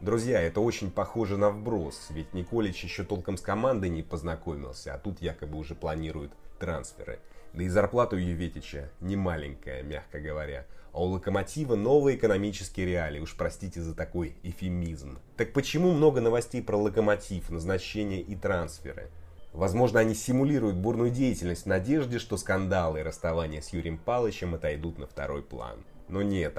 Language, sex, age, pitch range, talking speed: Russian, male, 30-49, 80-105 Hz, 155 wpm